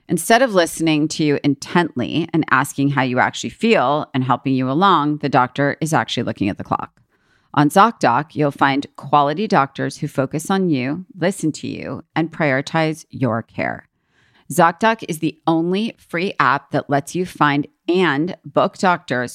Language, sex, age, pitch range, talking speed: English, female, 40-59, 140-170 Hz, 165 wpm